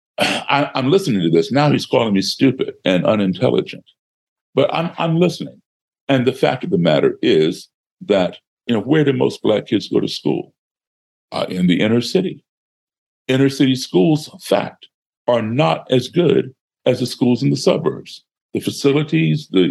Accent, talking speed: American, 165 wpm